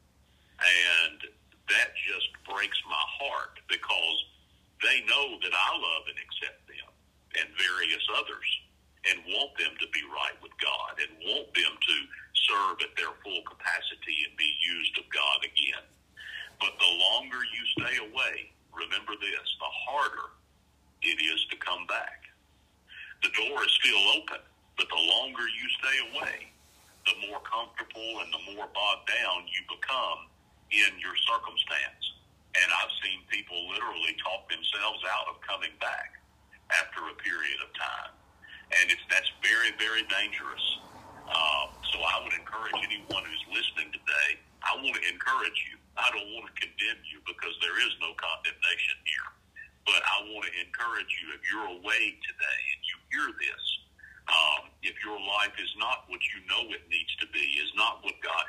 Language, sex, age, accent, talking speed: English, male, 50-69, American, 160 wpm